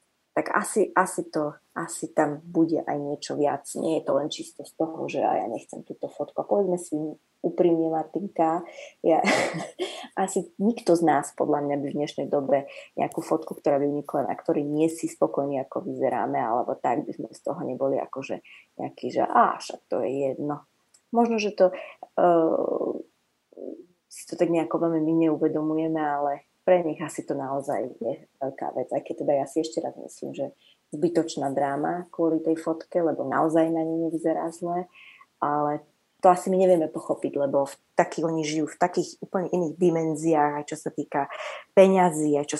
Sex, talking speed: female, 175 wpm